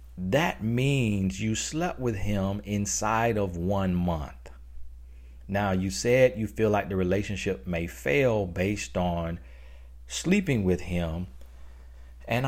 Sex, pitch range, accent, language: male, 75-100 Hz, American, English